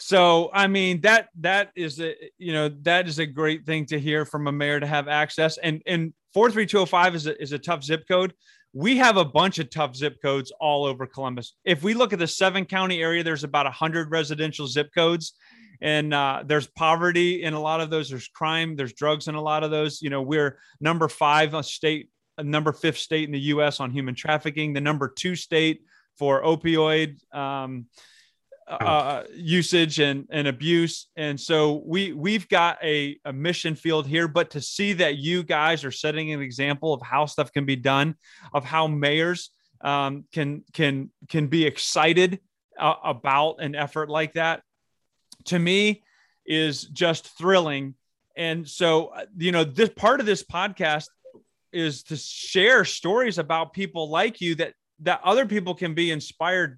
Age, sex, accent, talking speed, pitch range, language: 30-49, male, American, 190 wpm, 145-170 Hz, English